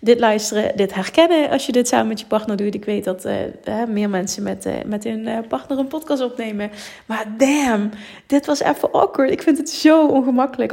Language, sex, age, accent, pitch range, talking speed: Dutch, female, 20-39, Dutch, 210-260 Hz, 220 wpm